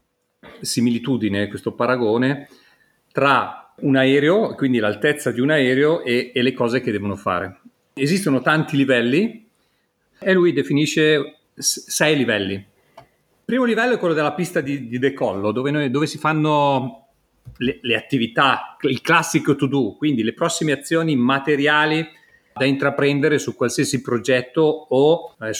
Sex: male